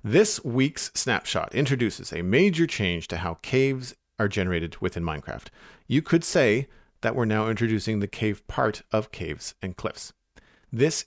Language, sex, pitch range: English, male, 95-125 Hz